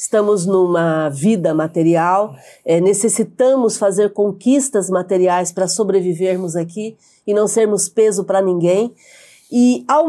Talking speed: 115 wpm